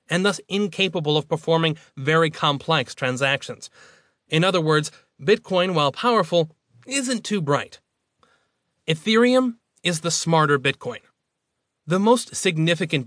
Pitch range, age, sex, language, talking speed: 135-180 Hz, 30-49, male, English, 115 wpm